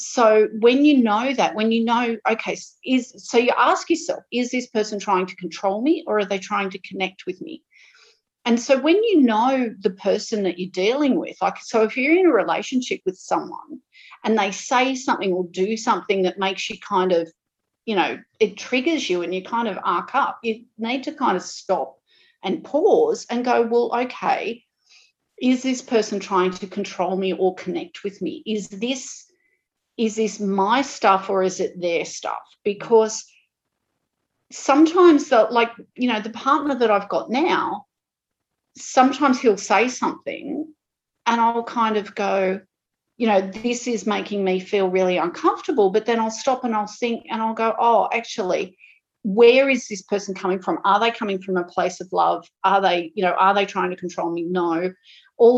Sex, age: female, 40-59